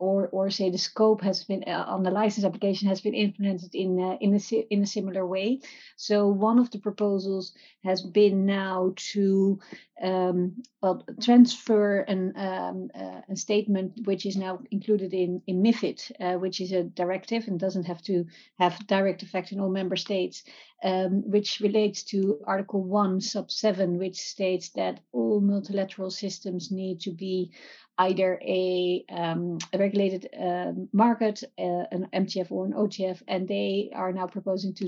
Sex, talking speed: female, 170 wpm